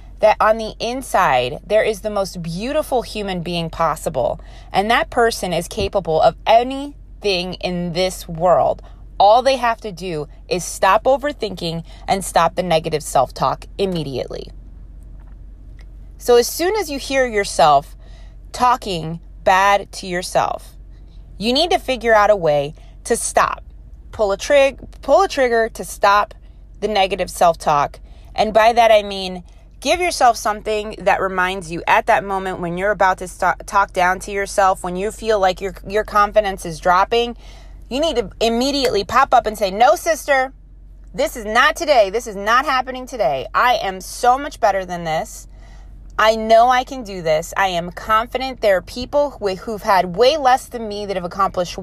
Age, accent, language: 20-39, American, English